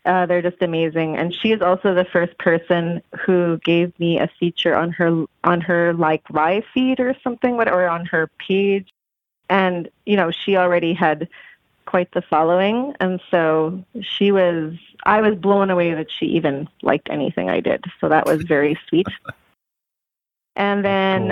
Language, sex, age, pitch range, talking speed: English, female, 30-49, 170-200 Hz, 170 wpm